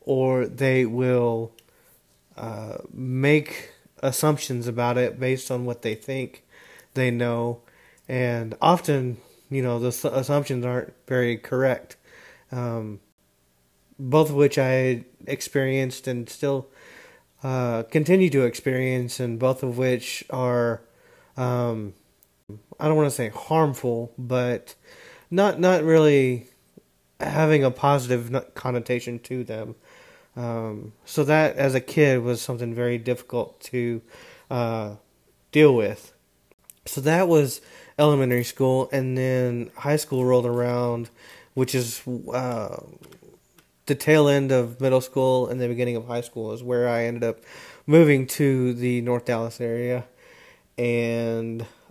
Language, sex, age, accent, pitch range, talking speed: English, male, 30-49, American, 120-135 Hz, 125 wpm